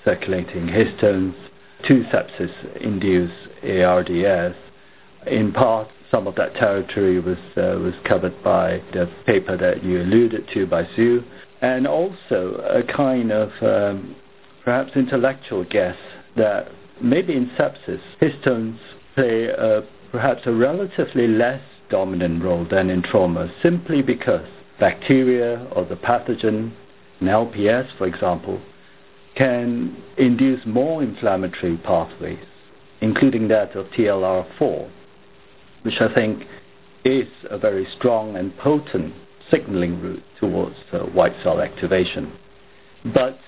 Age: 60-79